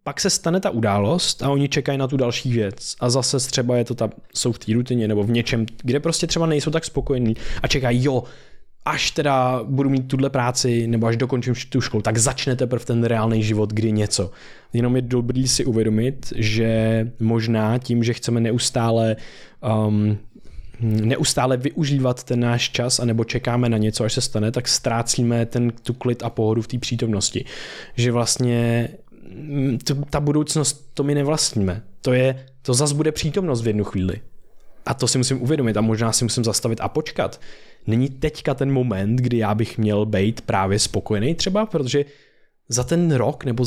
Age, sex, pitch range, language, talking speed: 20-39, male, 115-140 Hz, Czech, 185 wpm